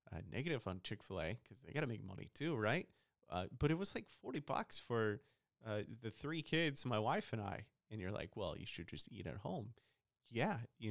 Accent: American